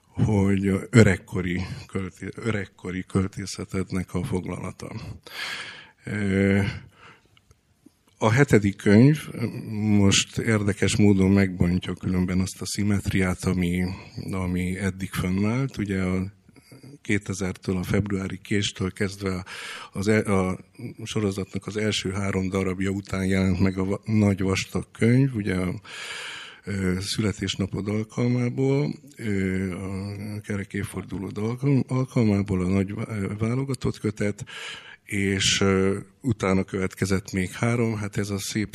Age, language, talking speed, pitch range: 60-79, Hungarian, 95 wpm, 95-110 Hz